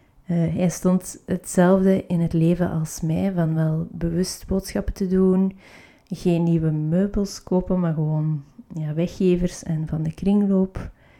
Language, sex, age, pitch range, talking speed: Dutch, female, 30-49, 165-185 Hz, 145 wpm